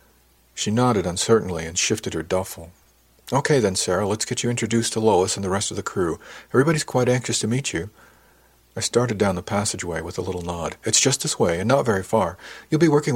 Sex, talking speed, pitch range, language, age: male, 220 wpm, 80-115 Hz, English, 50-69